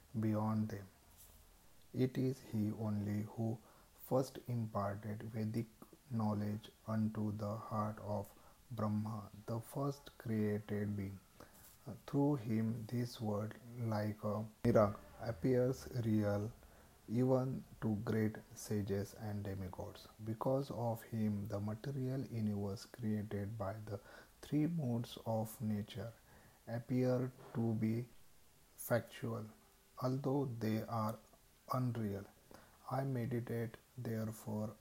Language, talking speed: English, 100 wpm